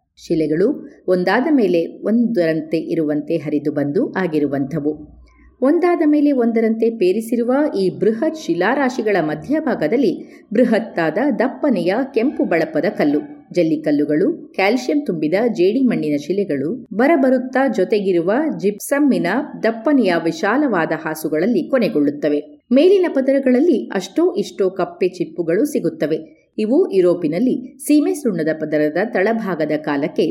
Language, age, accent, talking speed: Kannada, 30-49, native, 95 wpm